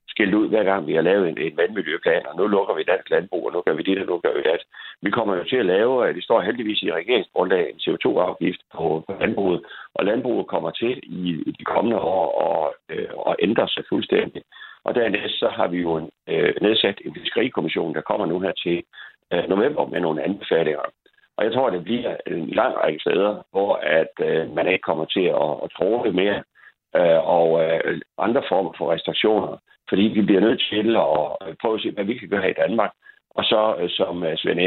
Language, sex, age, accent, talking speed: Danish, male, 60-79, native, 220 wpm